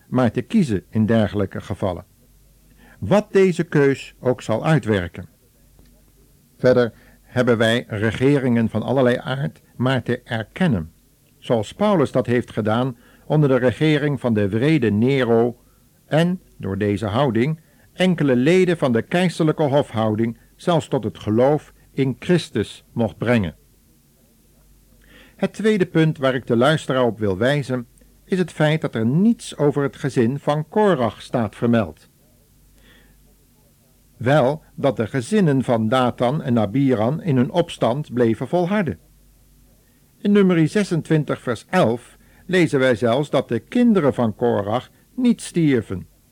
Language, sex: Dutch, male